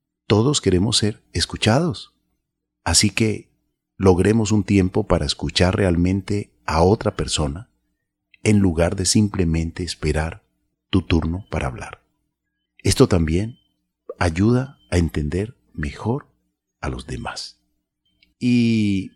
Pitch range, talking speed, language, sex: 70-105 Hz, 105 wpm, Spanish, male